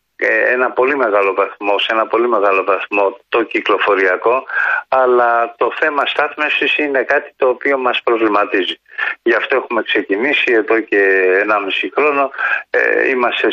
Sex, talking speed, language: male, 140 wpm, Greek